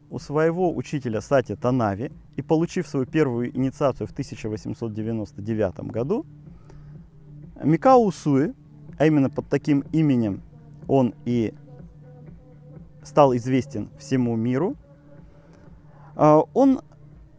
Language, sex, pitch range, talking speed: Russian, male, 120-155 Hz, 90 wpm